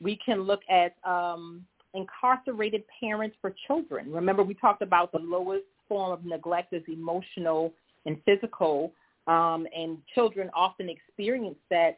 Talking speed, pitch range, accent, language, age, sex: 140 wpm, 170-200 Hz, American, English, 40-59, female